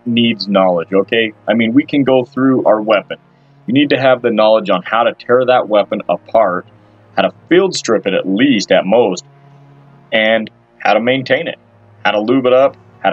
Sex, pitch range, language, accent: male, 110-140 Hz, English, American